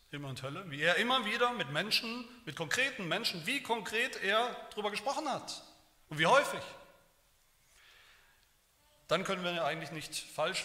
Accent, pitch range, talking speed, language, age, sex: German, 150-220 Hz, 160 wpm, German, 40-59, male